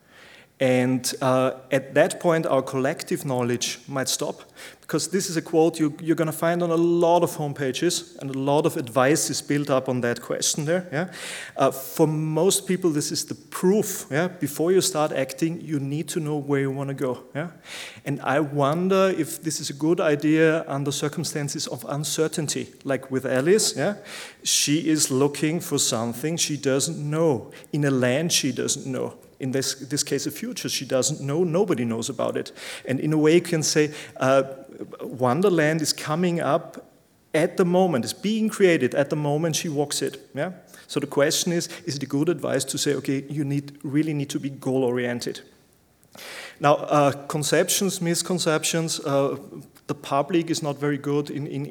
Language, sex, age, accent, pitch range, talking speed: German, male, 30-49, German, 135-165 Hz, 190 wpm